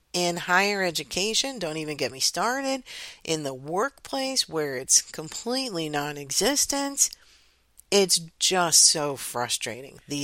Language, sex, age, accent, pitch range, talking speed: English, female, 50-69, American, 150-210 Hz, 115 wpm